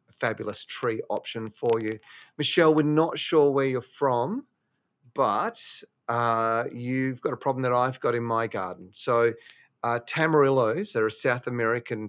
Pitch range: 115-140 Hz